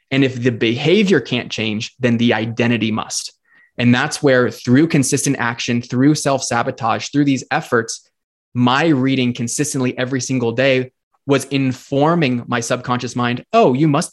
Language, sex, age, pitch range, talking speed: English, male, 20-39, 120-135 Hz, 150 wpm